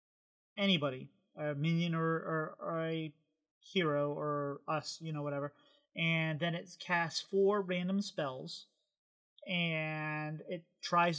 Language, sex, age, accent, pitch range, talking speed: English, male, 30-49, American, 150-185 Hz, 125 wpm